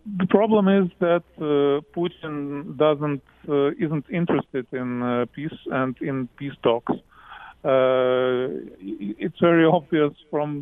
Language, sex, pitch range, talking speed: English, male, 140-165 Hz, 125 wpm